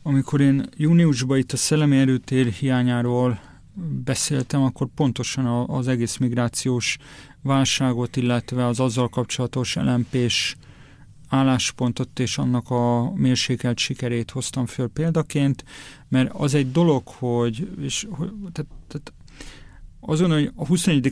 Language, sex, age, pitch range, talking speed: Hungarian, male, 40-59, 120-135 Hz, 120 wpm